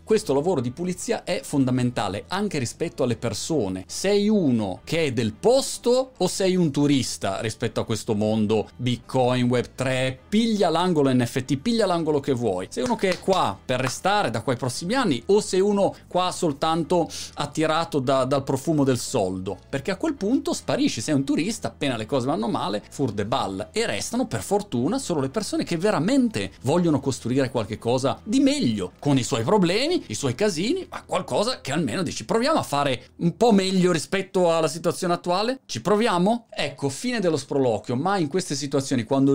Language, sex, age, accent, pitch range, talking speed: Italian, male, 30-49, native, 125-190 Hz, 180 wpm